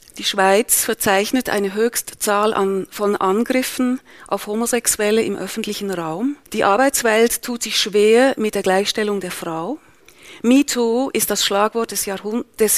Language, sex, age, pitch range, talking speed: German, female, 40-59, 200-235 Hz, 145 wpm